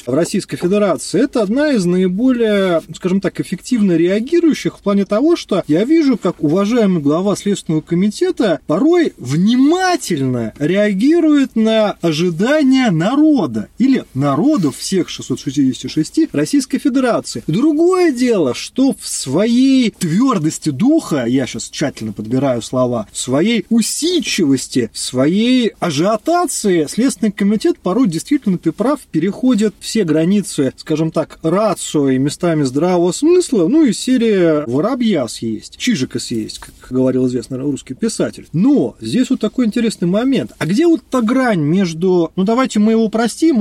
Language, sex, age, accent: Russian, male, 30-49, native